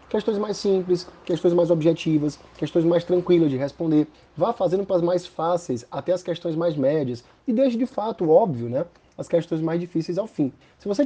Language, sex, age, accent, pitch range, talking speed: Portuguese, male, 20-39, Brazilian, 155-190 Hz, 195 wpm